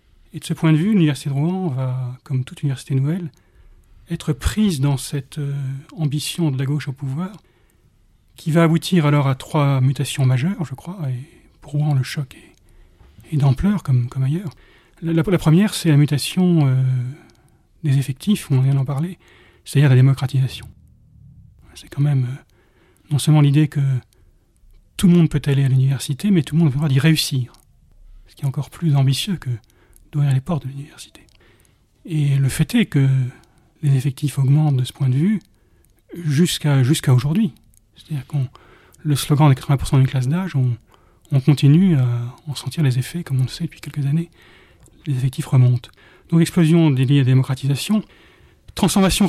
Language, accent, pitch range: French, French, 130-155 Hz